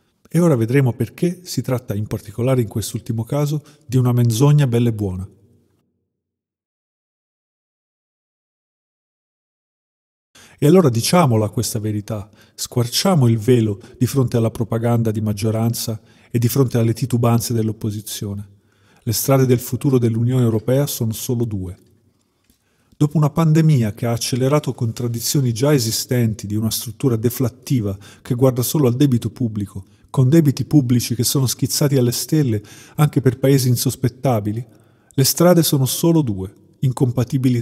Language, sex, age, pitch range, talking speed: Italian, male, 40-59, 110-135 Hz, 130 wpm